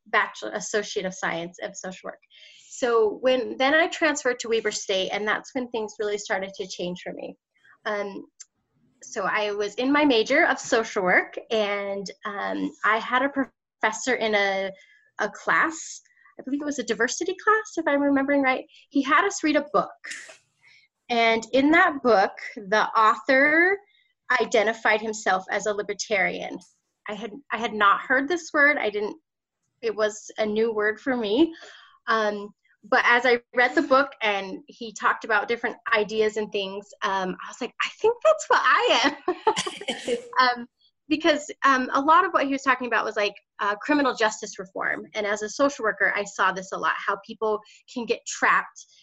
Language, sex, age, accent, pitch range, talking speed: English, female, 30-49, American, 210-285 Hz, 180 wpm